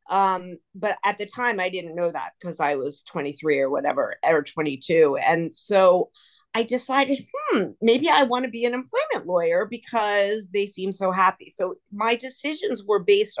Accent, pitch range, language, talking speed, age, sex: American, 180-230 Hz, English, 190 wpm, 40-59, female